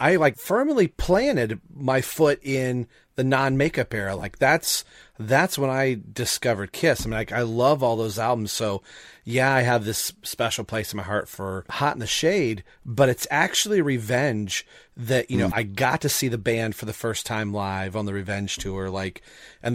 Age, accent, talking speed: 30-49, American, 200 wpm